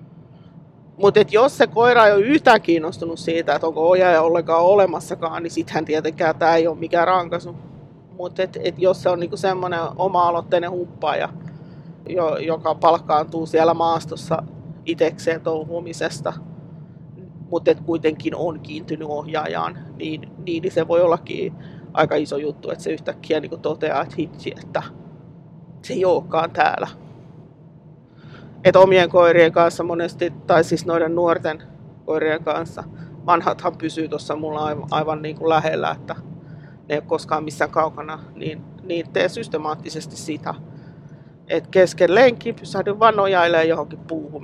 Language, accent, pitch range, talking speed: Finnish, native, 155-175 Hz, 130 wpm